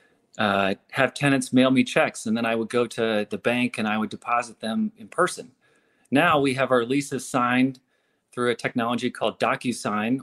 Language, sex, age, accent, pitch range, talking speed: English, male, 30-49, American, 115-140 Hz, 190 wpm